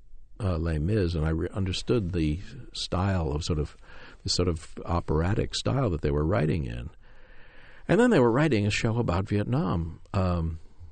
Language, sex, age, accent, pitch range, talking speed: English, male, 60-79, American, 80-95 Hz, 175 wpm